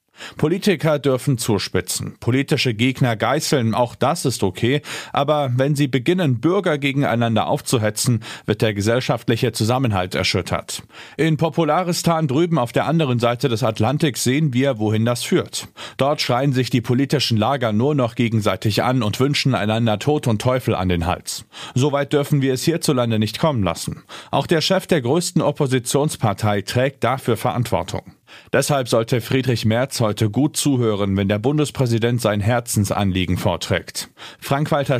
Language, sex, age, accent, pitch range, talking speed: German, male, 40-59, German, 110-140 Hz, 145 wpm